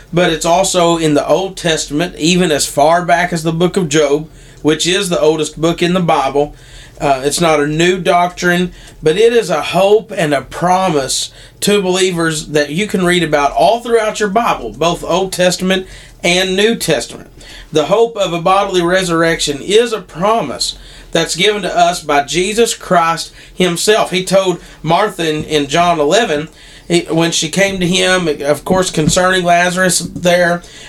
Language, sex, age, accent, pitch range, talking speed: English, male, 40-59, American, 155-195 Hz, 175 wpm